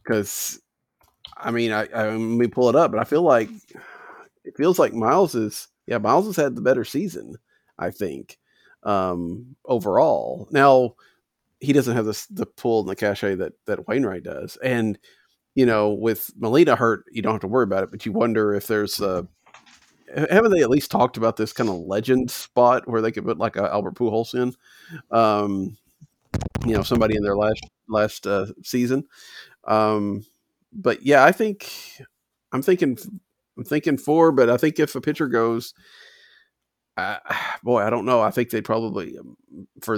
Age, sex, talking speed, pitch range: 40-59, male, 180 wpm, 105-145 Hz